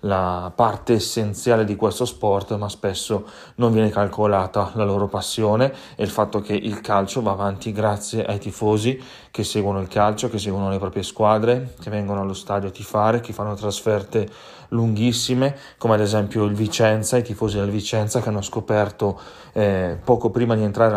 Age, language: 30-49, Italian